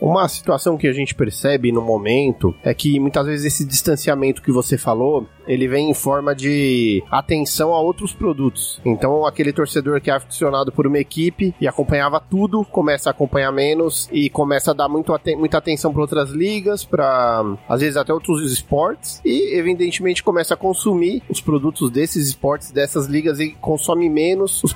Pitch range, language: 140-180 Hz, Portuguese